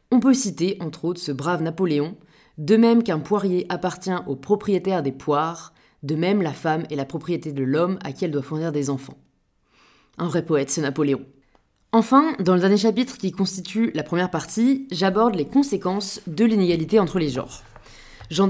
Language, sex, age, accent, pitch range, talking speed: French, female, 20-39, French, 155-205 Hz, 185 wpm